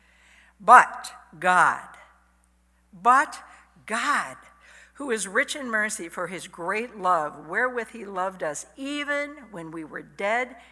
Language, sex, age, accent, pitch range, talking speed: English, female, 60-79, American, 175-240 Hz, 125 wpm